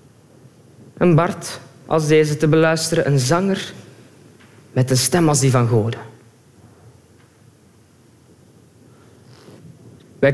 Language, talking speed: Dutch, 95 wpm